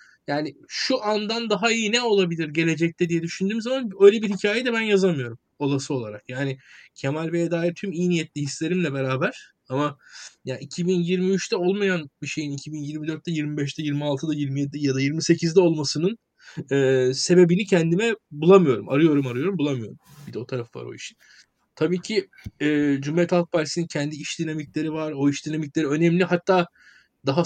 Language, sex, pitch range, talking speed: Turkish, male, 140-180 Hz, 155 wpm